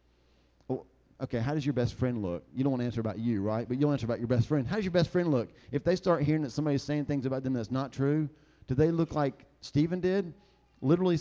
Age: 40-59